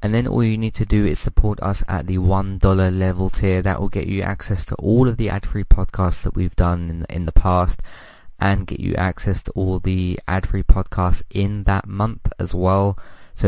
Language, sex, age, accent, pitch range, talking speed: English, male, 20-39, British, 90-105 Hz, 215 wpm